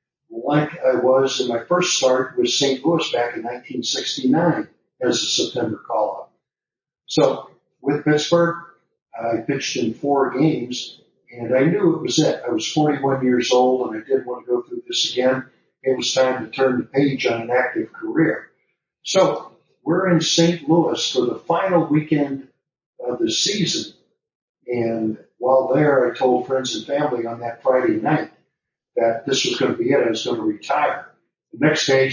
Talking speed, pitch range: 175 wpm, 125-155 Hz